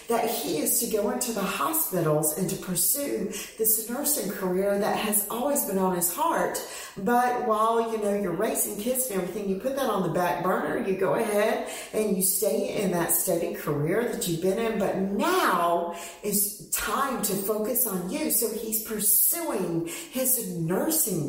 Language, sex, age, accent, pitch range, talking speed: English, female, 40-59, American, 185-260 Hz, 180 wpm